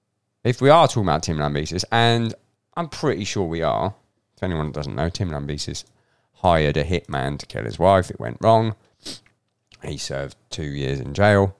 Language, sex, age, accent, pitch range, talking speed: English, male, 40-59, British, 90-120 Hz, 180 wpm